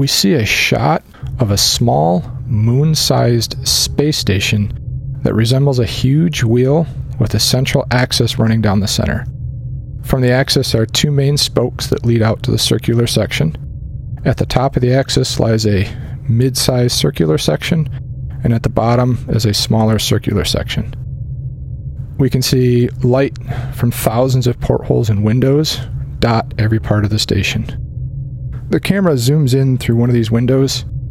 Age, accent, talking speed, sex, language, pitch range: 40-59, American, 160 wpm, male, English, 115-130 Hz